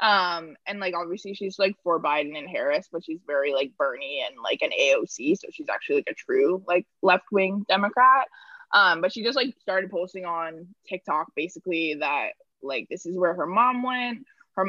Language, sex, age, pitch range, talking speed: English, female, 20-39, 170-250 Hz, 190 wpm